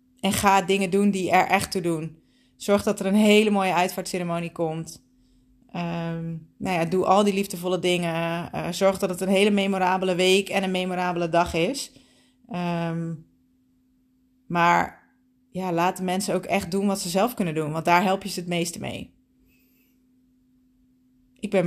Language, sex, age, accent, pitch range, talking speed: Dutch, female, 30-49, Dutch, 170-225 Hz, 170 wpm